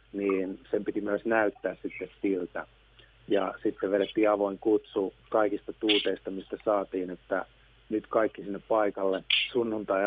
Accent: native